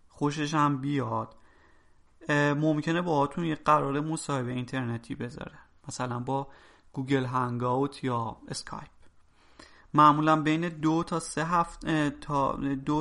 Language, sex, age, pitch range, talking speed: Persian, male, 30-49, 130-155 Hz, 90 wpm